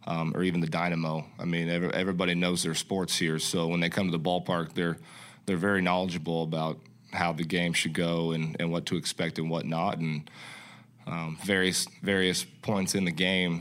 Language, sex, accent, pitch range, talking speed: English, male, American, 80-85 Hz, 200 wpm